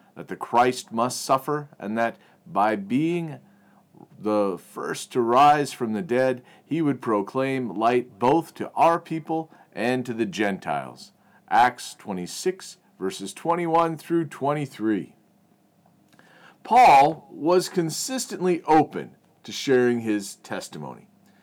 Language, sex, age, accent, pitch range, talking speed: English, male, 40-59, American, 115-160 Hz, 120 wpm